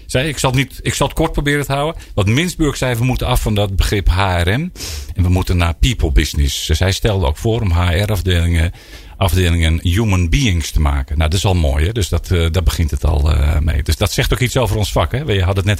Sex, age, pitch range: male, 50-69, 85-115 Hz